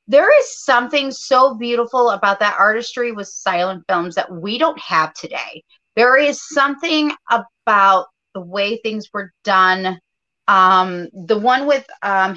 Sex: female